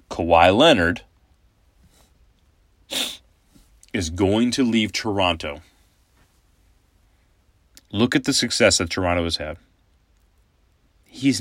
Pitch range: 80-100 Hz